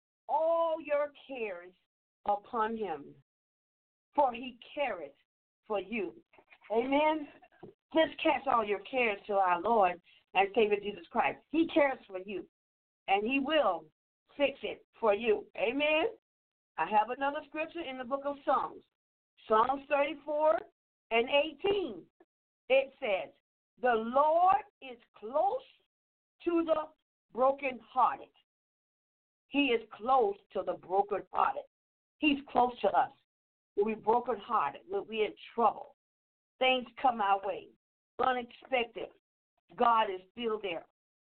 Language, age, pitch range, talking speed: English, 50-69, 220-290 Hz, 120 wpm